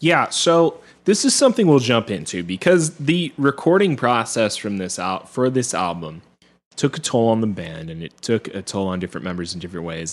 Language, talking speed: English, 205 wpm